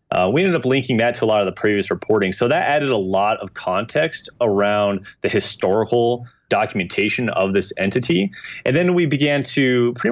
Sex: male